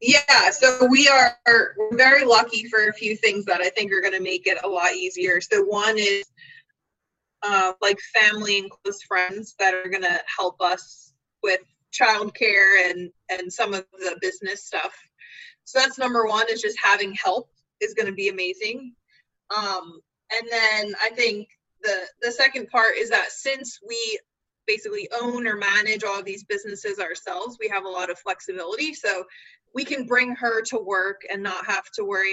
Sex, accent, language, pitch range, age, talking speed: female, American, English, 195-255 Hz, 20-39, 180 wpm